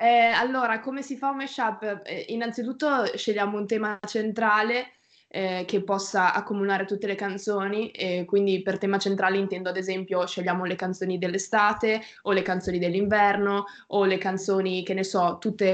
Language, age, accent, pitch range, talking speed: Italian, 20-39, native, 190-220 Hz, 160 wpm